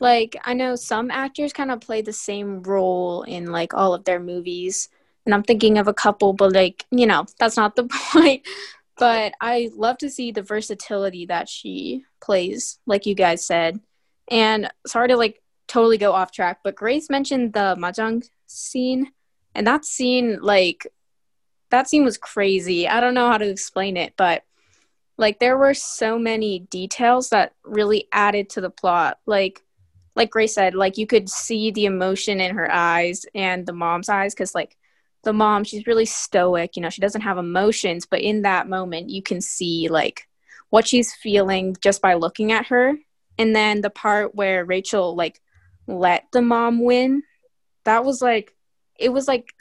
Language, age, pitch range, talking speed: English, 10-29, 185-230 Hz, 180 wpm